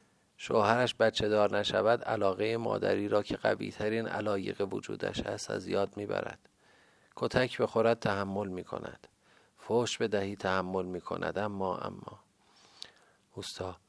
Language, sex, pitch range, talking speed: Persian, male, 95-110 Hz, 115 wpm